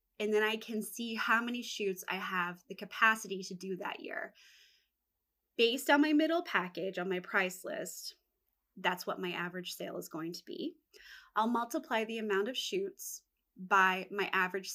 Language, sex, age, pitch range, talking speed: English, female, 20-39, 185-235 Hz, 175 wpm